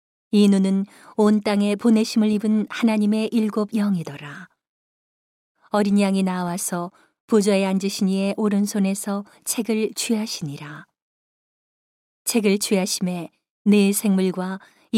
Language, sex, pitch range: Korean, female, 190-215 Hz